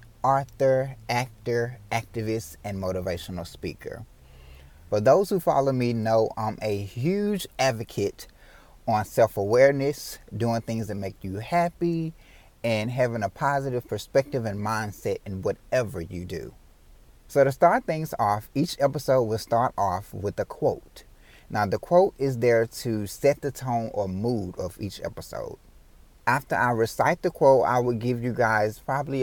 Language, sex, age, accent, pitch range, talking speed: English, male, 30-49, American, 100-130 Hz, 150 wpm